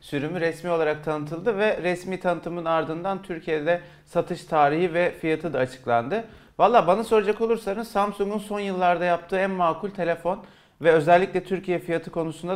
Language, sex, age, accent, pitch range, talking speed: Turkish, male, 40-59, native, 140-180 Hz, 150 wpm